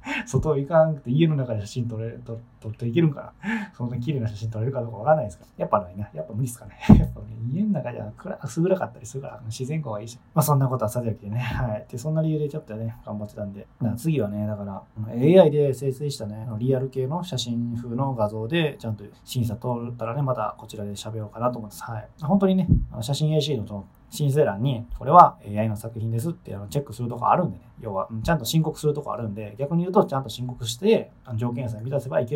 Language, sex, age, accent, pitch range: Japanese, male, 20-39, native, 110-140 Hz